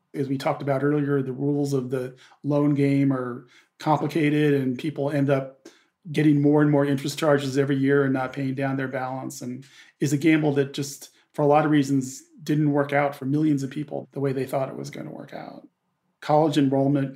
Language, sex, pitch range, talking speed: English, male, 135-150 Hz, 215 wpm